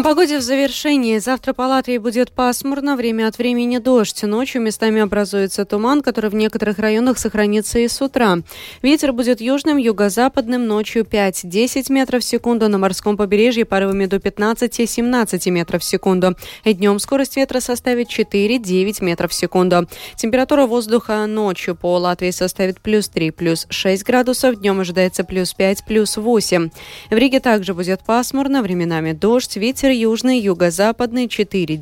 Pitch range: 185-245 Hz